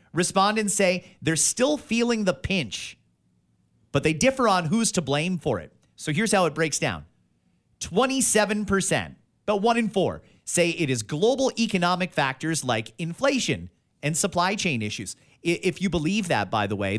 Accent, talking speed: American, 165 wpm